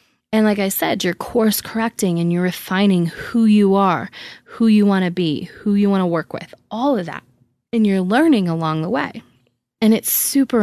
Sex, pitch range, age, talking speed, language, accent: female, 165-205 Hz, 20-39, 205 wpm, English, American